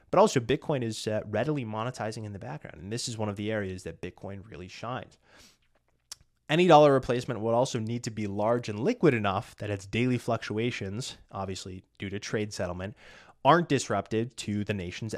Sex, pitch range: male, 100-140 Hz